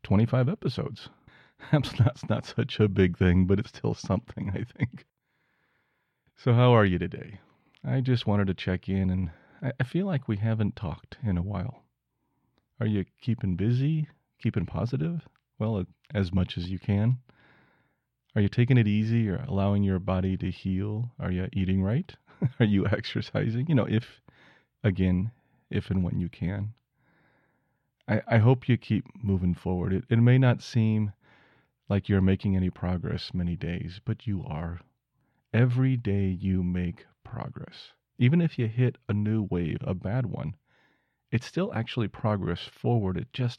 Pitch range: 95-130 Hz